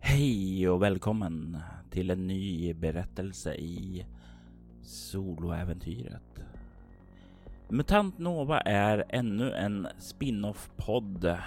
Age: 30-49